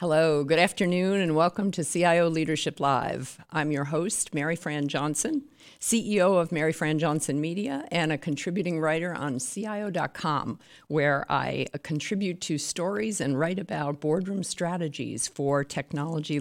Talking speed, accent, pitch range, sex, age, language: 145 wpm, American, 150-185 Hz, female, 50-69, English